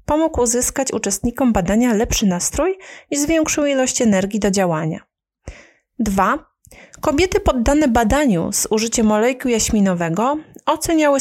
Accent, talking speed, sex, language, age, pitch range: native, 110 wpm, female, Polish, 30-49, 200-285 Hz